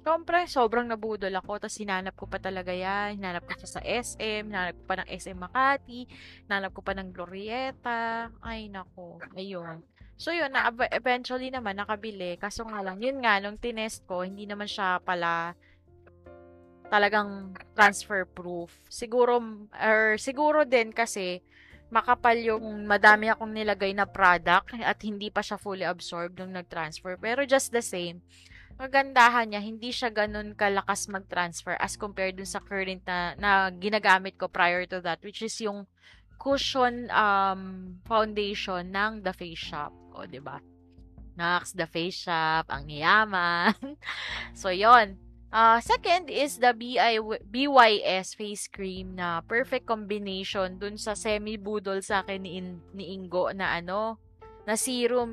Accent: native